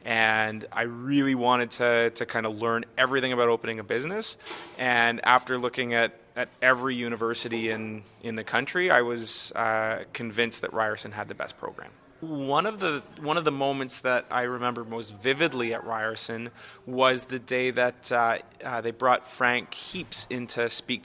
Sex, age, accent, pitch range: male, 30-49, American, 115-130 Hz